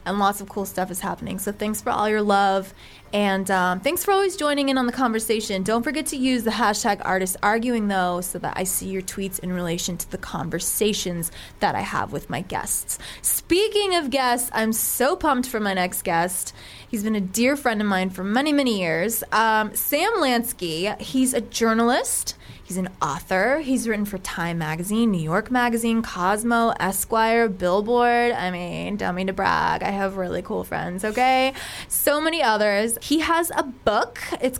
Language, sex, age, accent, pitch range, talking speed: English, female, 20-39, American, 185-240 Hz, 190 wpm